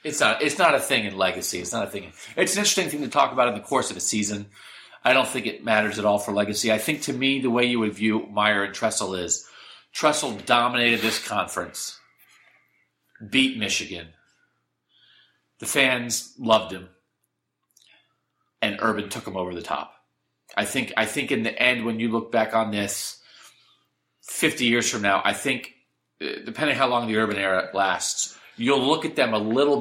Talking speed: 195 wpm